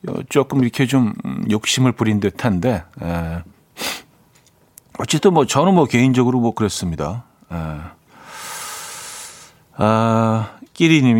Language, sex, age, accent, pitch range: Korean, male, 40-59, native, 105-155 Hz